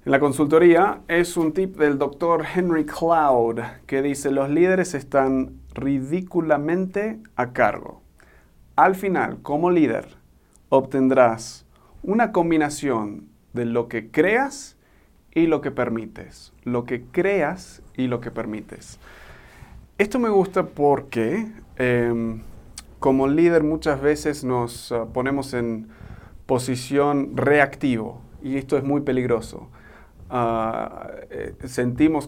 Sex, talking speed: male, 115 wpm